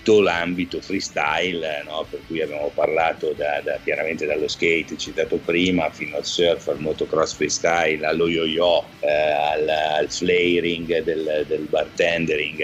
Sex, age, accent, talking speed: male, 50-69, native, 140 wpm